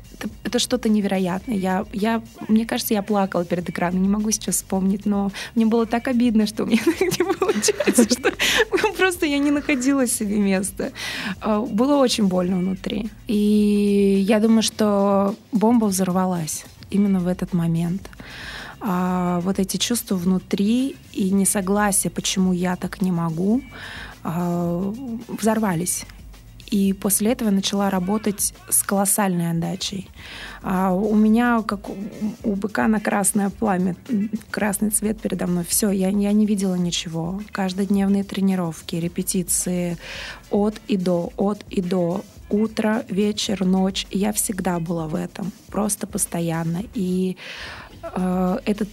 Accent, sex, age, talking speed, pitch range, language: native, female, 20-39, 130 wpm, 185-220 Hz, Russian